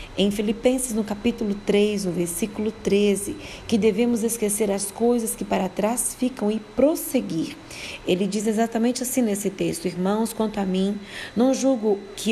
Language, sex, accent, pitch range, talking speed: Portuguese, female, Brazilian, 180-225 Hz, 155 wpm